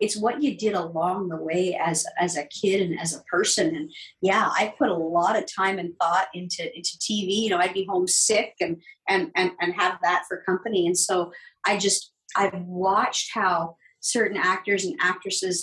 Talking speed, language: 205 wpm, English